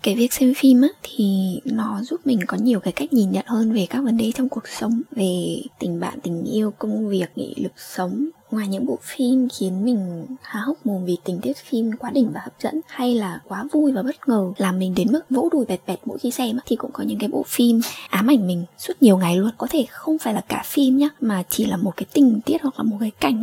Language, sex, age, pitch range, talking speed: Vietnamese, female, 10-29, 210-275 Hz, 260 wpm